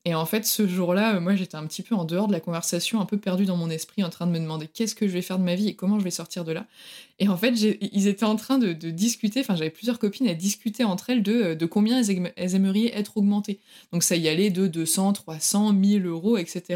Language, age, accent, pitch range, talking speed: French, 20-39, French, 180-230 Hz, 290 wpm